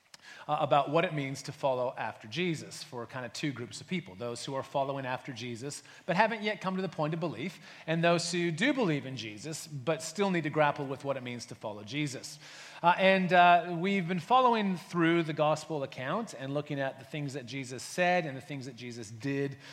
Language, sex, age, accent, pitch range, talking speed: English, male, 30-49, American, 135-175 Hz, 220 wpm